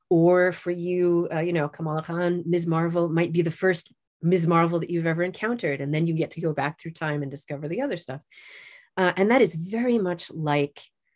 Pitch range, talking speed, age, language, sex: 155-185 Hz, 220 wpm, 30-49, English, female